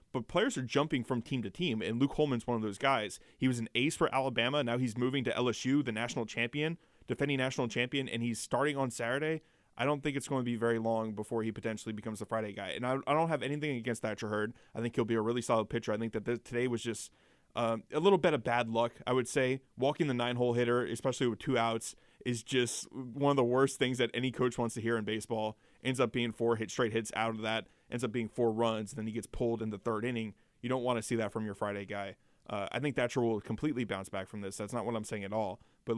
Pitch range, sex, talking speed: 110-125 Hz, male, 270 wpm